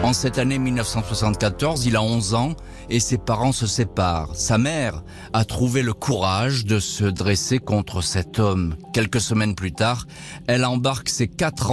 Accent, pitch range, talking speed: French, 100-135 Hz, 170 wpm